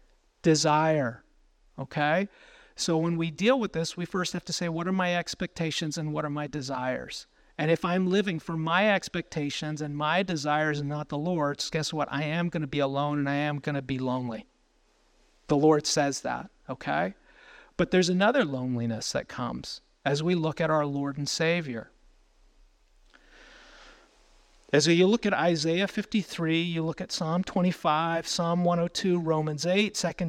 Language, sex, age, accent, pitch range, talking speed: English, male, 40-59, American, 145-175 Hz, 170 wpm